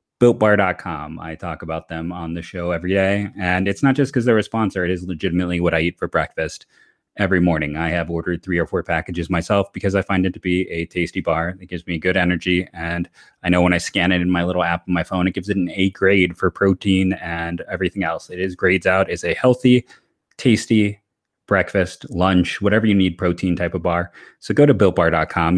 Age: 30-49